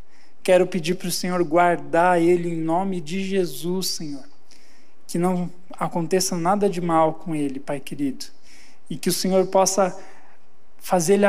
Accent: Brazilian